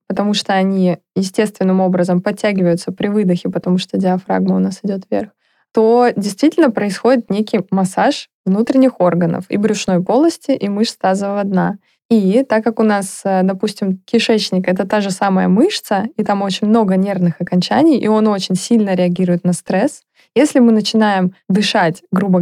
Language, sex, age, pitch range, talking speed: Russian, female, 20-39, 190-235 Hz, 160 wpm